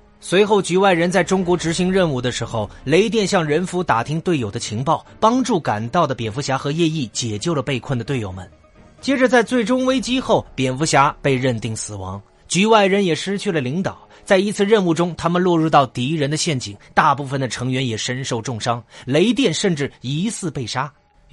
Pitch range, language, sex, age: 125-185 Hz, Chinese, male, 30-49